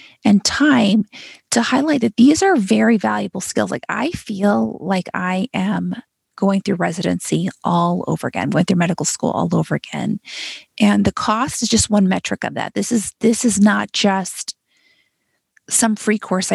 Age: 30-49